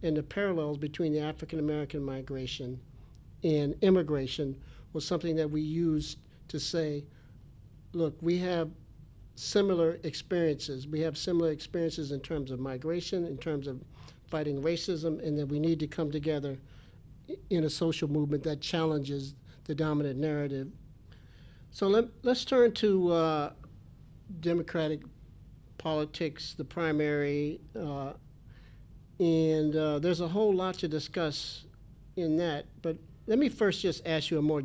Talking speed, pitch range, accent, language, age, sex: 135 wpm, 145-170 Hz, American, English, 60-79, male